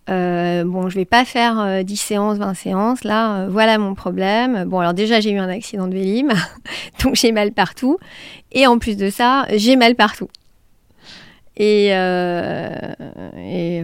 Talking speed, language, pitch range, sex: 185 wpm, French, 185-220 Hz, female